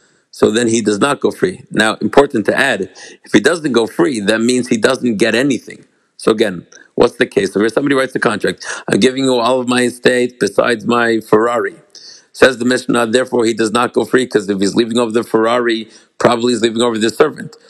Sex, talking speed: male, 215 wpm